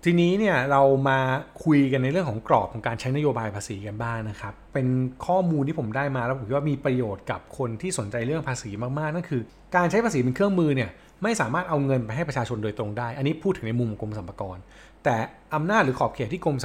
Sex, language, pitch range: male, Thai, 115-160 Hz